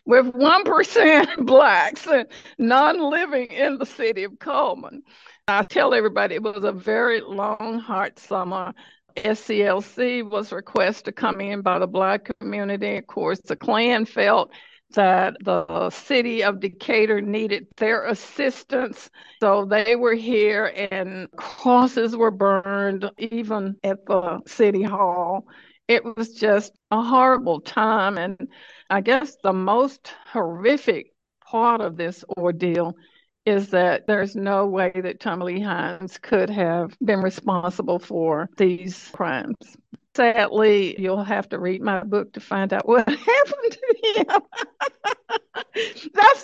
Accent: American